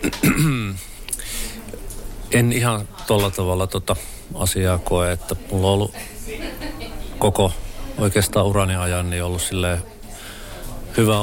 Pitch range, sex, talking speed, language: 95-110 Hz, male, 95 wpm, Finnish